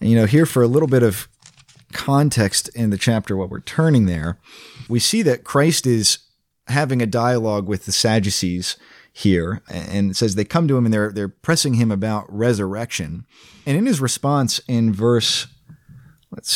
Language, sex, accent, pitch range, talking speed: English, male, American, 110-135 Hz, 180 wpm